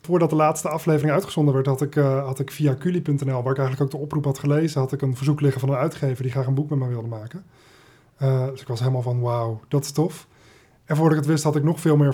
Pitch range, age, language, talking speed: 130-145 Hz, 20-39, Dutch, 280 wpm